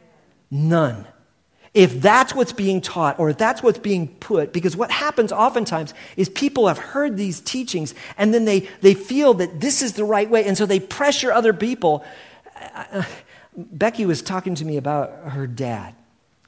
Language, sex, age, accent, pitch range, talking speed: English, male, 50-69, American, 150-215 Hz, 180 wpm